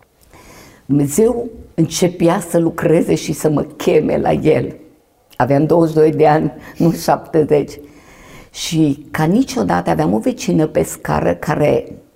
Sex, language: female, Romanian